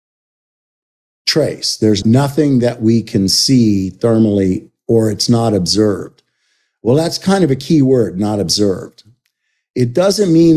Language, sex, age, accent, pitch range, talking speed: English, male, 50-69, American, 105-135 Hz, 130 wpm